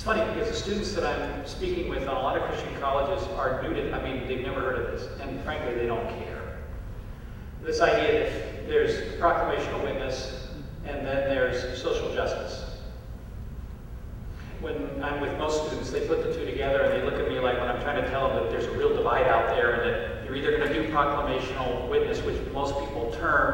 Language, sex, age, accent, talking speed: English, male, 40-59, American, 210 wpm